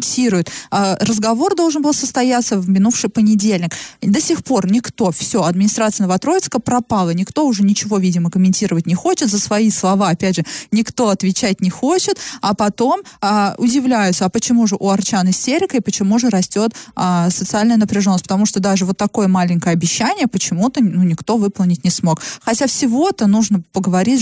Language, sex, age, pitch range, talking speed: Russian, female, 20-39, 190-245 Hz, 155 wpm